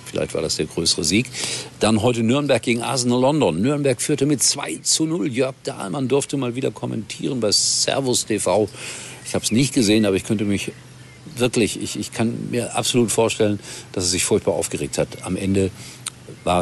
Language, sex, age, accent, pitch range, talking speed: German, male, 50-69, German, 95-130 Hz, 190 wpm